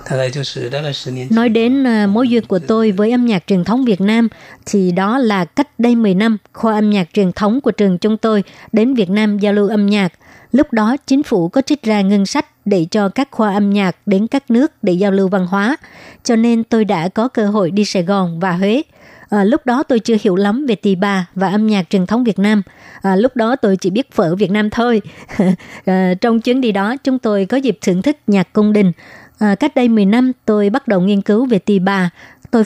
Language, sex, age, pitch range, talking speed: Vietnamese, male, 60-79, 195-230 Hz, 230 wpm